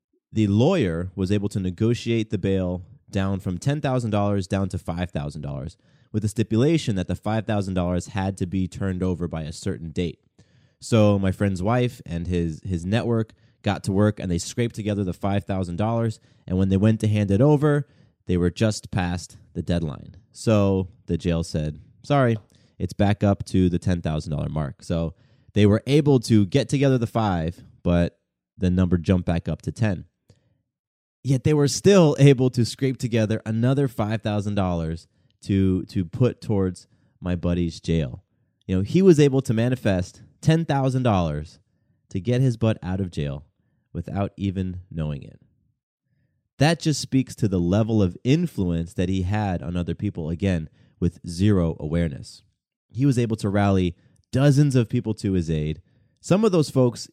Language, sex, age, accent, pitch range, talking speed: English, male, 20-39, American, 90-120 Hz, 165 wpm